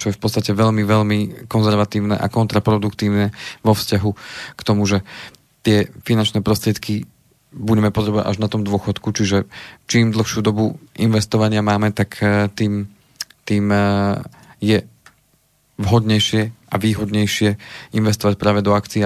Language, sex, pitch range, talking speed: Slovak, male, 105-110 Hz, 125 wpm